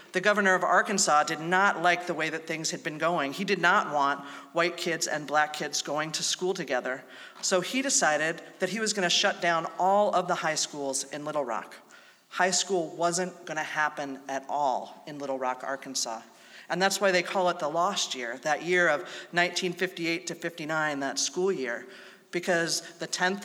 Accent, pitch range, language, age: American, 150-185 Hz, English, 40-59